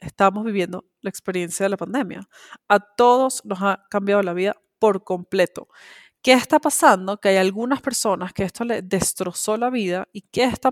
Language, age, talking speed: Spanish, 20-39, 180 wpm